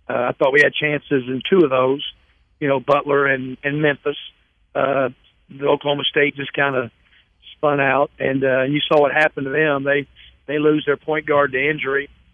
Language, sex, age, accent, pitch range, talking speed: English, male, 50-69, American, 135-155 Hz, 205 wpm